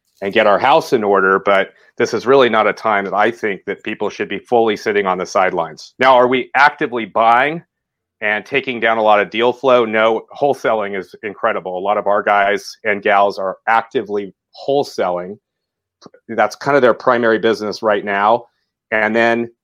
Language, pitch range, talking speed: English, 105-120 Hz, 190 wpm